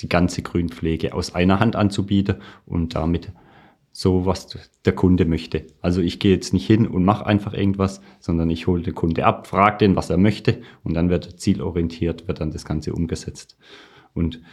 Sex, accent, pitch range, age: male, German, 80-95 Hz, 40-59